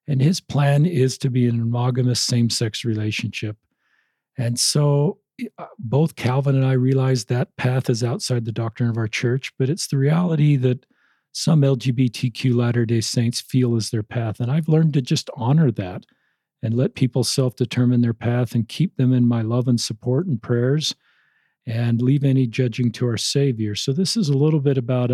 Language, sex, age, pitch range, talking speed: English, male, 50-69, 120-140 Hz, 185 wpm